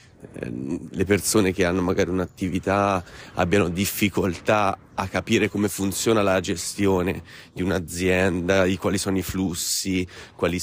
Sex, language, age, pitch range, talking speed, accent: male, Italian, 30-49, 90-105 Hz, 125 wpm, native